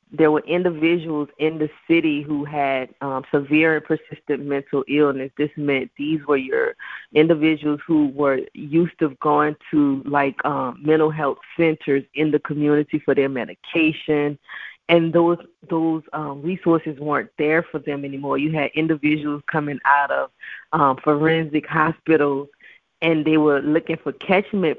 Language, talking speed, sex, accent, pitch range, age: English, 150 wpm, female, American, 145-160 Hz, 20-39